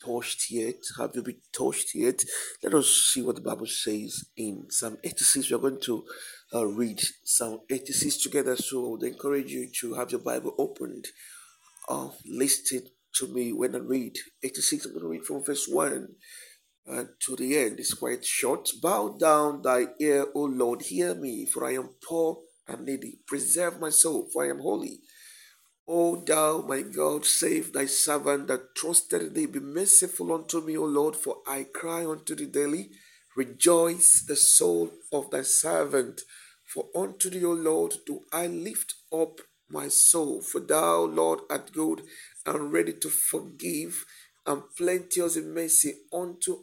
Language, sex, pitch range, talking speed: English, male, 130-175 Hz, 170 wpm